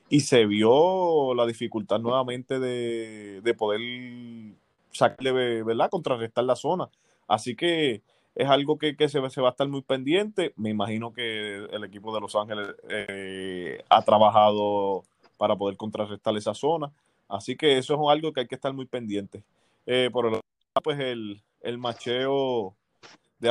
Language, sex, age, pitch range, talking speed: Spanish, male, 20-39, 110-130 Hz, 160 wpm